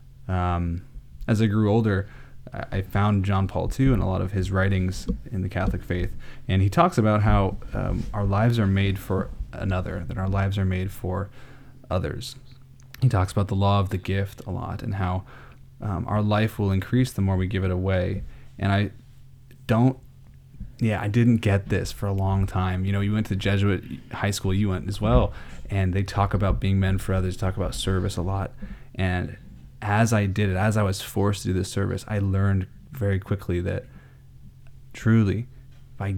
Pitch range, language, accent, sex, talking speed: 95-120 Hz, English, American, male, 195 wpm